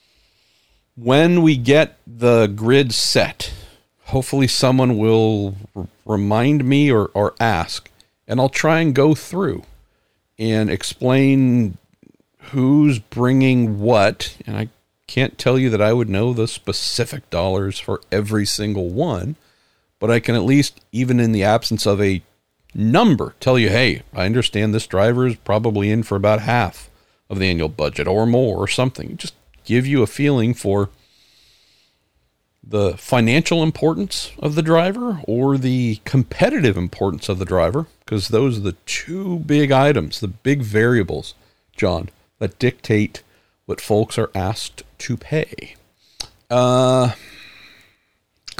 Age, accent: 50-69, American